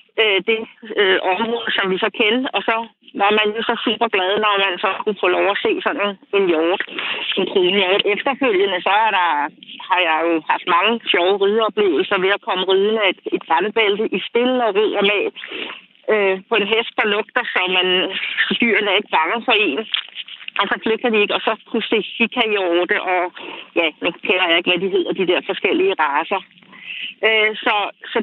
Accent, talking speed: native, 190 wpm